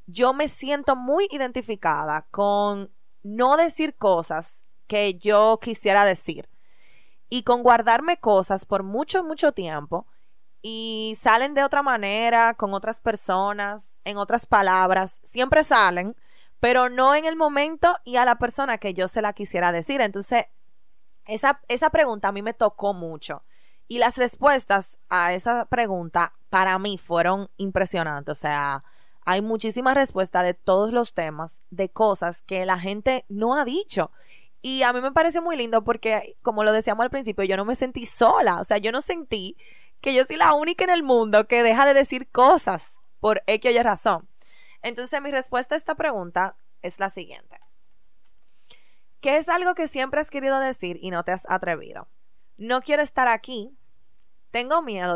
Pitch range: 190-260 Hz